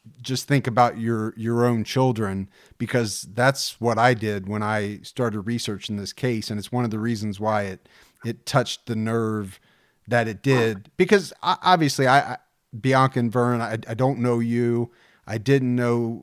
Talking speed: 180 wpm